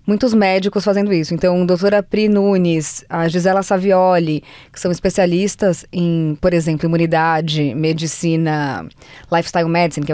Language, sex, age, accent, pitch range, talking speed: Portuguese, female, 20-39, Brazilian, 160-190 Hz, 130 wpm